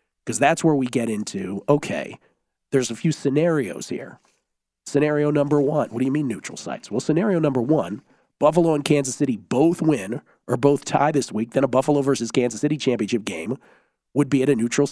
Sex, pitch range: male, 110-150 Hz